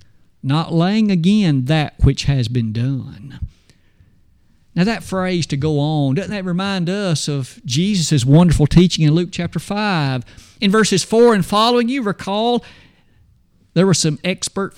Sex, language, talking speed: male, English, 150 wpm